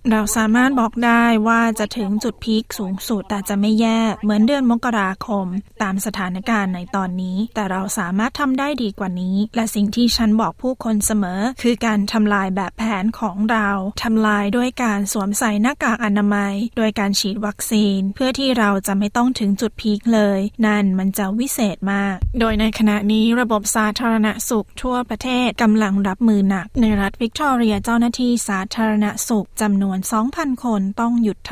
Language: Thai